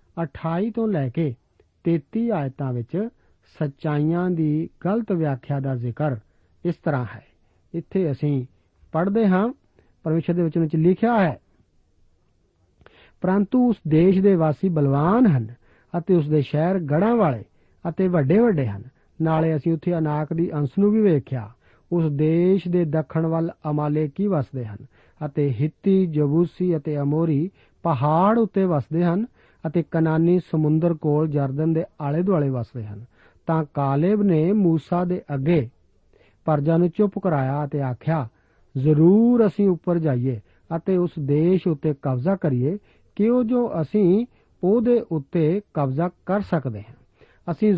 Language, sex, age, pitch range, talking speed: Punjabi, male, 50-69, 140-185 Hz, 100 wpm